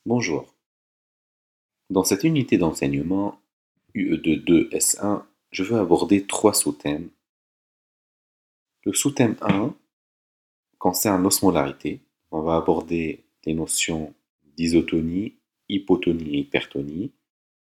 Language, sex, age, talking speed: French, male, 40-59, 85 wpm